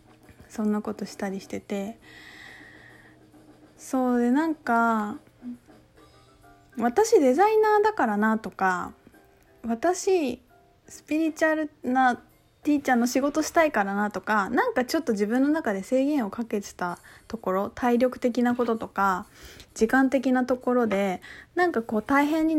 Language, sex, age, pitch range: Japanese, female, 20-39, 205-270 Hz